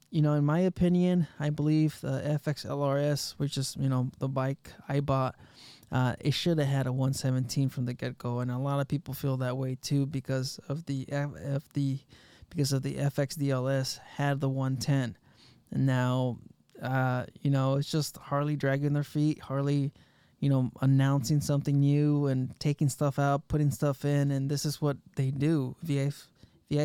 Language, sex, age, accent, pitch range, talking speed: English, male, 20-39, American, 130-150 Hz, 185 wpm